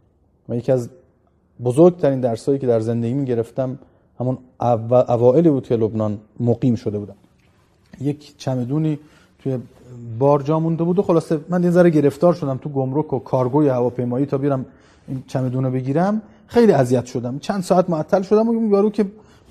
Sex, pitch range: male, 125-185 Hz